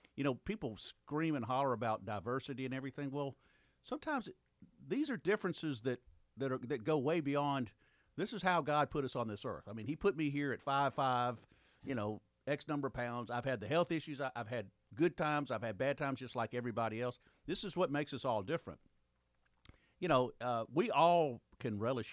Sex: male